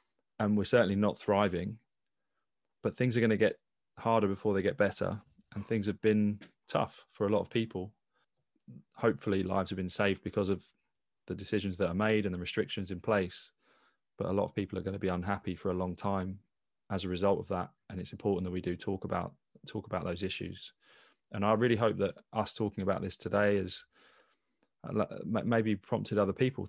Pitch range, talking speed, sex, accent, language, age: 95-105 Hz, 200 wpm, male, British, English, 20-39